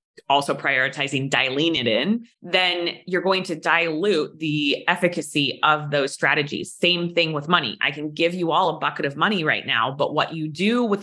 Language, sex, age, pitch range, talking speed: English, female, 20-39, 145-180 Hz, 190 wpm